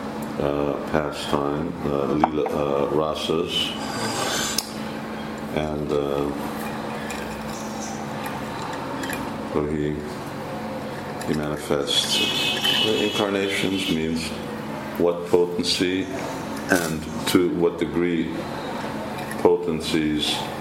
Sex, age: male, 50-69